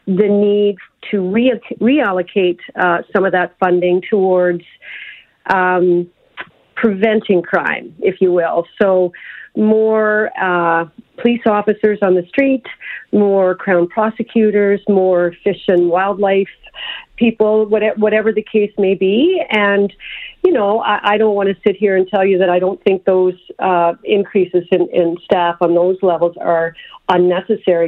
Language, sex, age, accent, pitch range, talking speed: English, female, 40-59, American, 175-215 Hz, 140 wpm